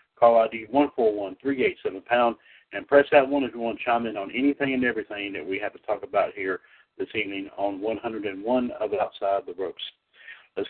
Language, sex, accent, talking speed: English, male, American, 235 wpm